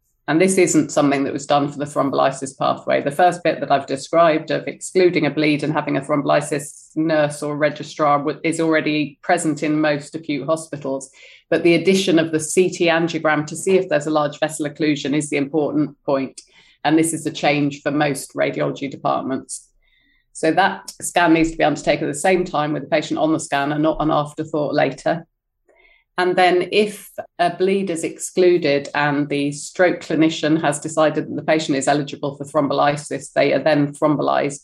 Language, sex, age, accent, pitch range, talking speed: English, female, 30-49, British, 145-165 Hz, 185 wpm